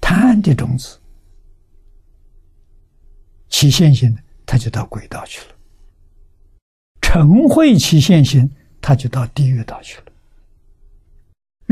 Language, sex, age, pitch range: Chinese, male, 60-79, 80-125 Hz